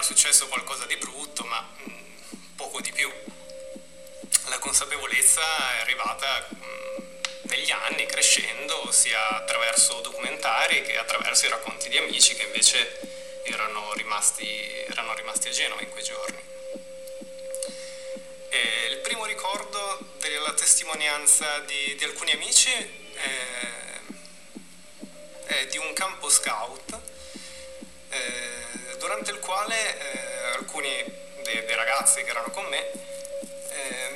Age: 30-49